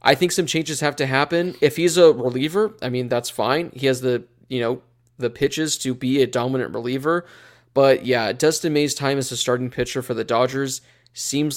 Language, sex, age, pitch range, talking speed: English, male, 20-39, 120-145 Hz, 205 wpm